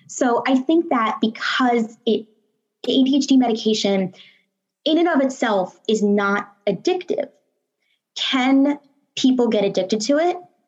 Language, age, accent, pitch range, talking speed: English, 20-39, American, 200-260 Hz, 120 wpm